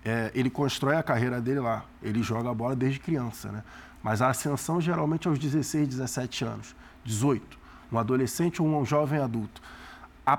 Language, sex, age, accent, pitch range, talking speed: Portuguese, male, 20-39, Brazilian, 130-185 Hz, 175 wpm